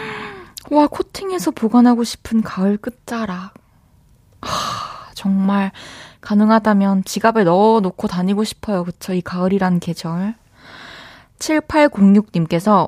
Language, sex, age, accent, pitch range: Korean, female, 20-39, native, 185-235 Hz